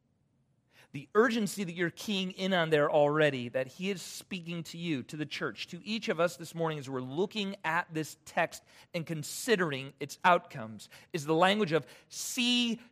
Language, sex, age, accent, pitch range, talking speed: English, male, 40-59, American, 170-220 Hz, 180 wpm